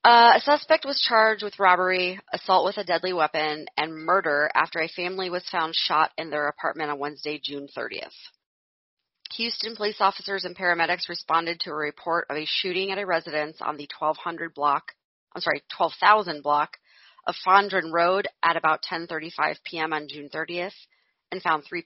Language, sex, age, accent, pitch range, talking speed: English, female, 30-49, American, 160-195 Hz, 160 wpm